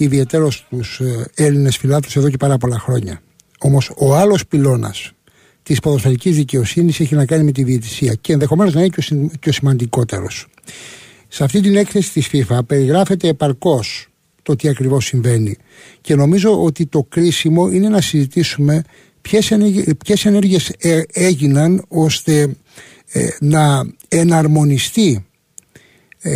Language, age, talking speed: Greek, 60-79, 125 wpm